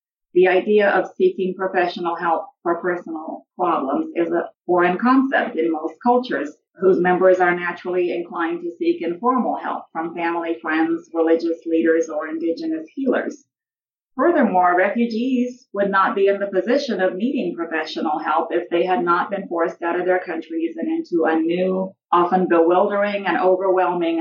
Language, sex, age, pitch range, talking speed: English, female, 40-59, 165-210 Hz, 155 wpm